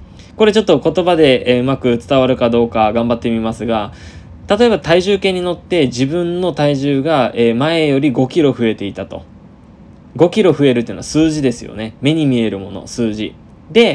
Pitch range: 115-150 Hz